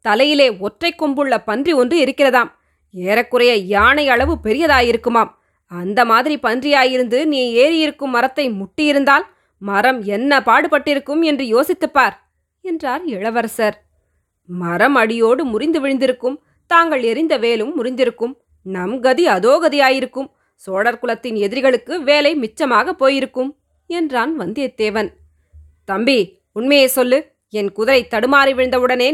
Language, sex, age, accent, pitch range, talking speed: Tamil, female, 20-39, native, 220-280 Hz, 105 wpm